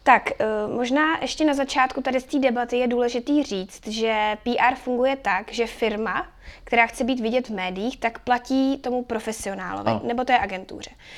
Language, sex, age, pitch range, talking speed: Czech, female, 20-39, 225-265 Hz, 165 wpm